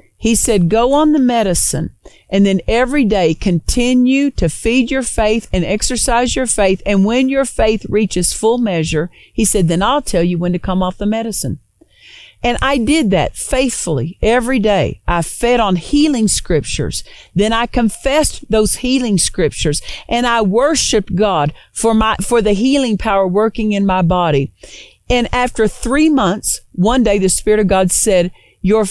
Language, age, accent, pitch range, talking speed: English, 50-69, American, 190-250 Hz, 170 wpm